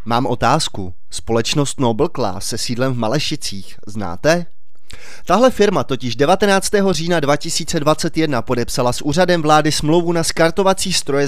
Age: 30-49